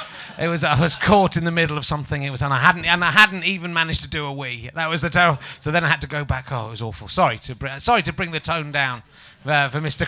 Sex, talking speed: male, 305 wpm